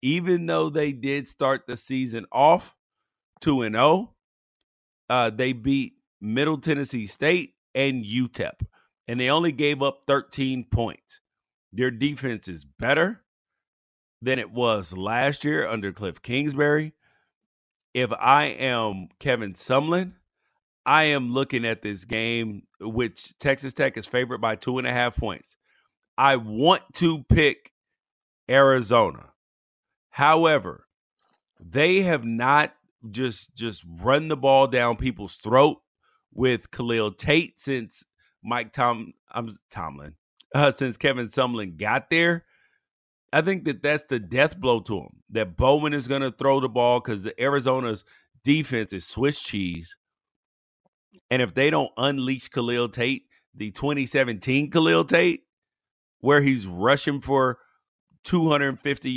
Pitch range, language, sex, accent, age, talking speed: 115-140 Hz, English, male, American, 40-59, 130 wpm